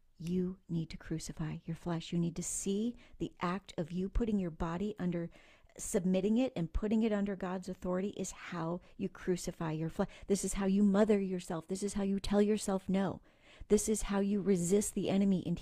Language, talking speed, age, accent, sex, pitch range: English, 205 wpm, 40-59, American, female, 175-215 Hz